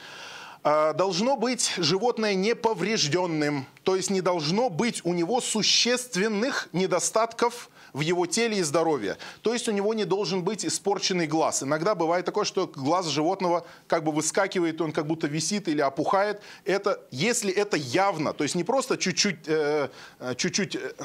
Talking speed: 150 wpm